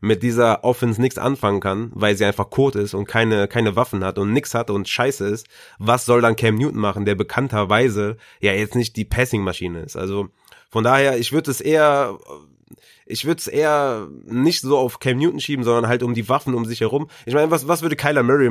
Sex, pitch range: male, 105-130 Hz